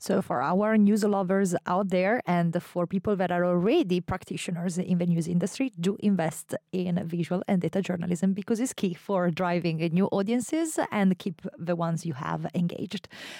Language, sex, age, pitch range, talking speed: English, female, 30-49, 175-210 Hz, 175 wpm